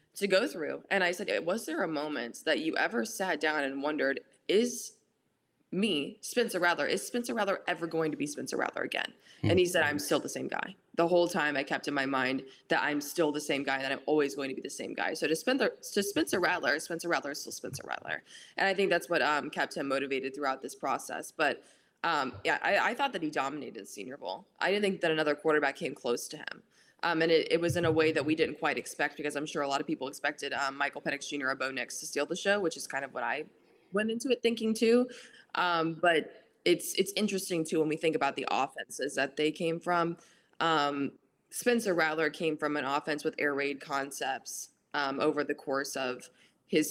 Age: 20-39